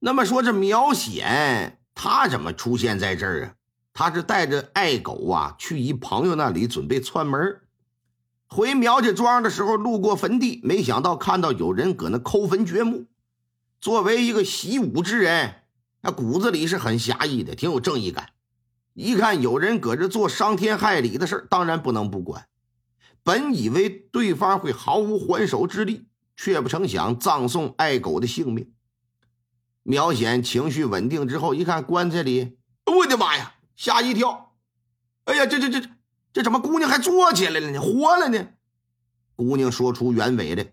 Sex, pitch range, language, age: male, 120-200 Hz, Chinese, 50-69